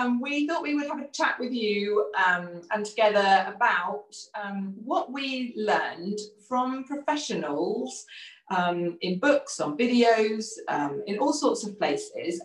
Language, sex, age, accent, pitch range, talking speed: English, female, 30-49, British, 185-235 Hz, 145 wpm